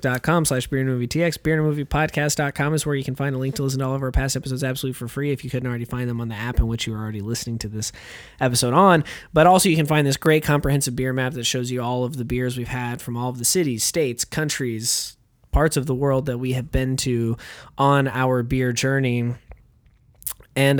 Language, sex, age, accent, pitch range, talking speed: English, male, 20-39, American, 125-150 Hz, 255 wpm